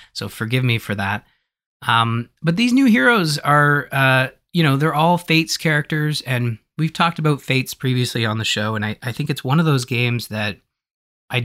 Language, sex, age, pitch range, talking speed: English, male, 20-39, 105-135 Hz, 200 wpm